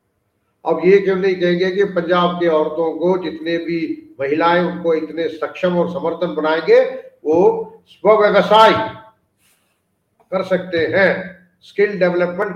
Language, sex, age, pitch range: English, male, 50-69, 145-195 Hz